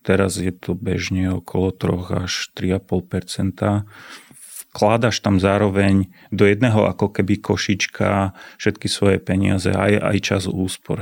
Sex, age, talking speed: male, 30-49, 130 wpm